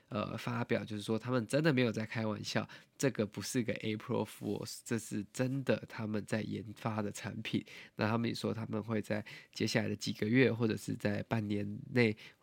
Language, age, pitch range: Chinese, 20-39, 110-130 Hz